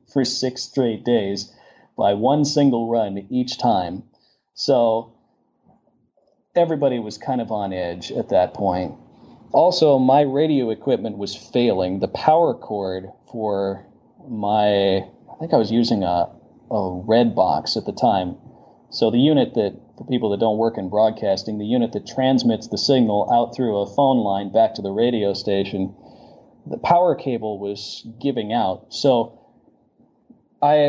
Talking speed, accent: 150 wpm, American